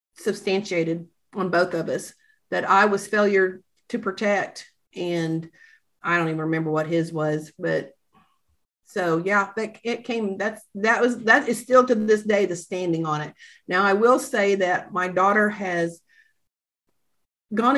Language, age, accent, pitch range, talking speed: English, 40-59, American, 180-225 Hz, 160 wpm